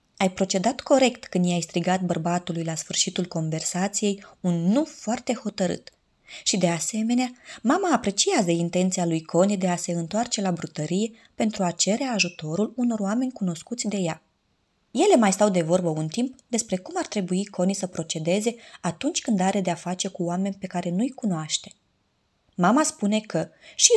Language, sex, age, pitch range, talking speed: Romanian, female, 20-39, 175-230 Hz, 165 wpm